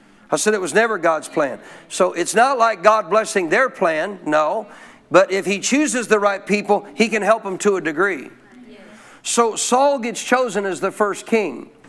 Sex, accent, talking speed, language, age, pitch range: male, American, 190 wpm, English, 50-69, 185-230 Hz